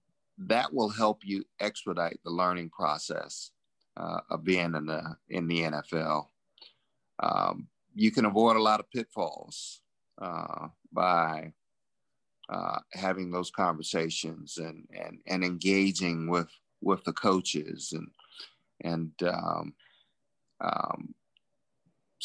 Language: English